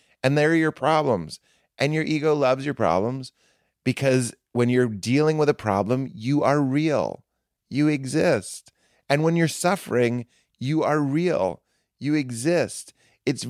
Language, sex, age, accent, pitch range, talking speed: English, male, 30-49, American, 105-145 Hz, 140 wpm